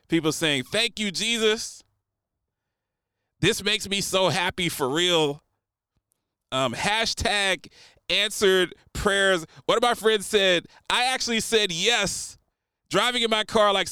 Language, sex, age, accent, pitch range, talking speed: English, male, 30-49, American, 105-170 Hz, 130 wpm